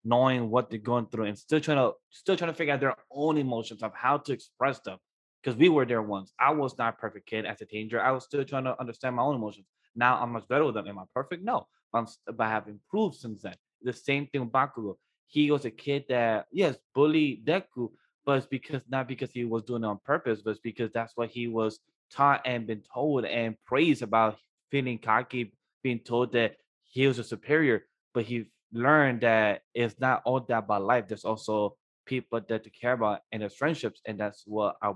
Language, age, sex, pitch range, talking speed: English, 20-39, male, 110-130 Hz, 225 wpm